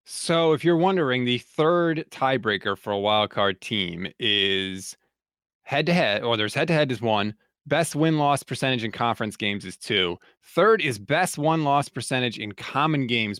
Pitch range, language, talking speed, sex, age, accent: 110-155 Hz, English, 180 wpm, male, 30-49, American